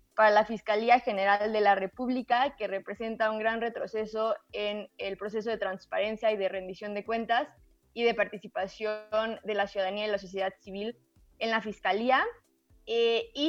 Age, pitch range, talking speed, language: 20-39, 205-235 Hz, 165 wpm, English